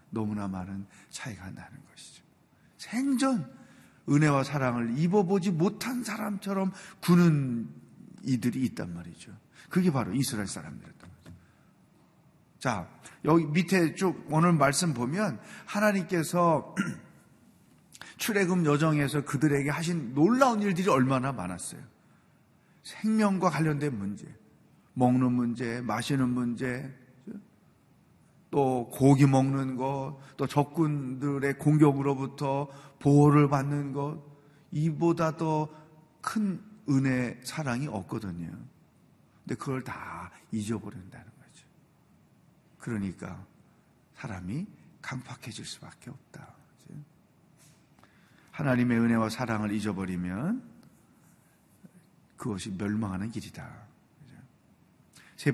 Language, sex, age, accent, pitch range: Korean, male, 40-59, native, 125-170 Hz